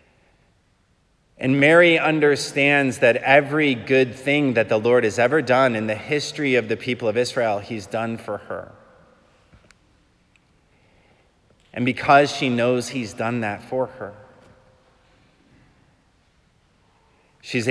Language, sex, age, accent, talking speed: English, male, 30-49, American, 120 wpm